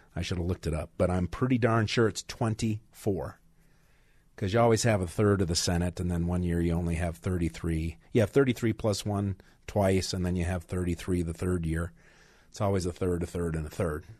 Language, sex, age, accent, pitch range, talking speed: English, male, 40-59, American, 95-130 Hz, 225 wpm